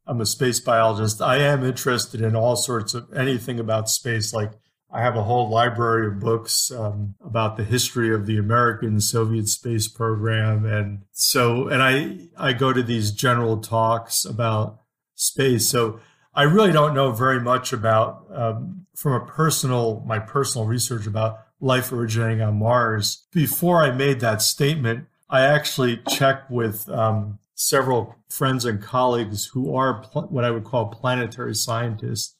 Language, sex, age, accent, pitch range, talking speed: English, male, 40-59, American, 110-130 Hz, 160 wpm